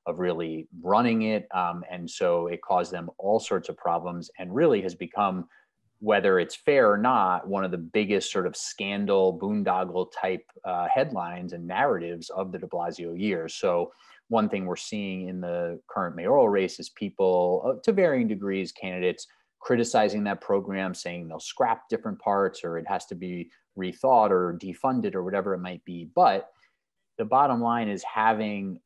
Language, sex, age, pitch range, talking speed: English, male, 30-49, 85-105 Hz, 175 wpm